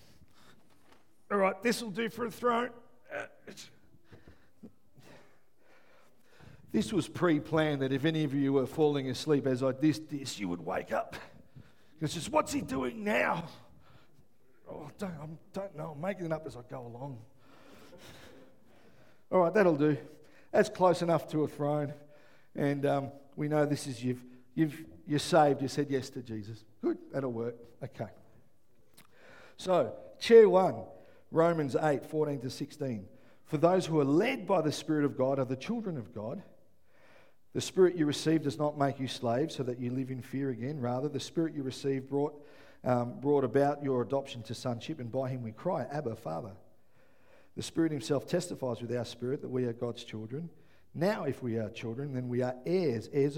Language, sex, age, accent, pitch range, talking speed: English, male, 50-69, Australian, 125-160 Hz, 170 wpm